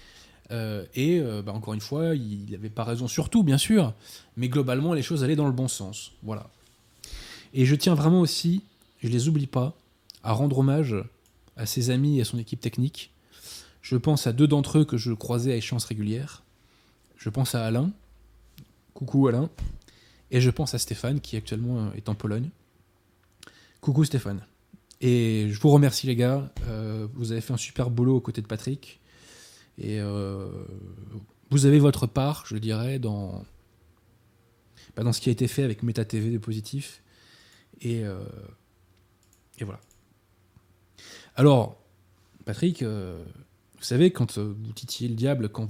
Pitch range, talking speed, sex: 100-130 Hz, 160 wpm, male